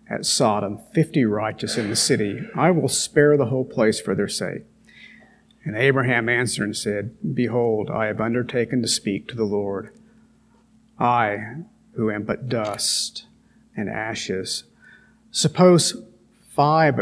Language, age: English, 50-69